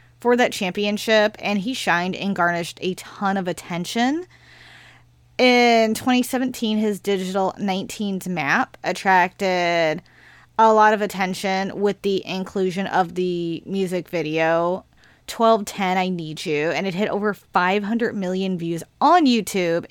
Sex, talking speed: female, 130 wpm